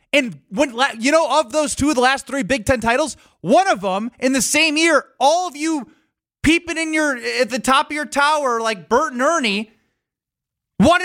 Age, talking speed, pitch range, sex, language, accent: 20-39, 200 wpm, 260-335 Hz, male, English, American